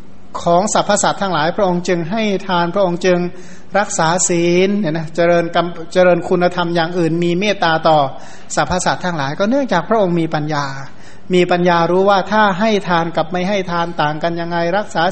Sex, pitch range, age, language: male, 160-185 Hz, 60-79, Thai